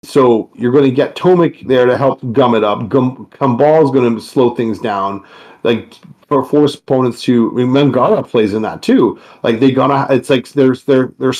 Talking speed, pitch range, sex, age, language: 205 wpm, 120-145 Hz, male, 40-59, English